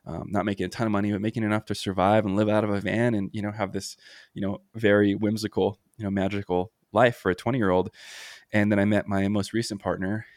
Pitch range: 90-105 Hz